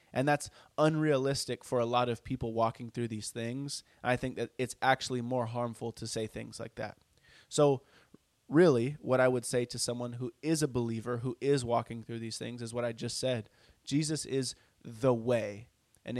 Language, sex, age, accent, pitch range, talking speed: English, male, 20-39, American, 115-135 Hz, 195 wpm